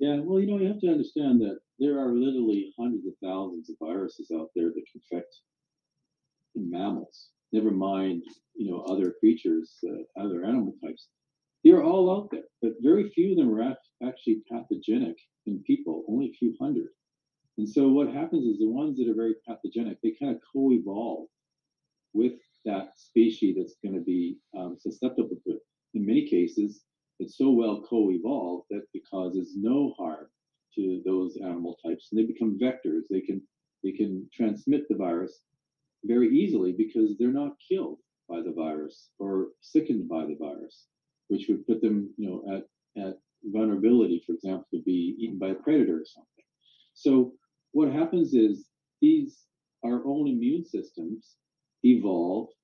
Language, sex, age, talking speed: English, male, 50-69, 165 wpm